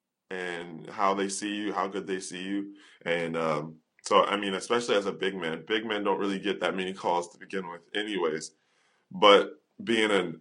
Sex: male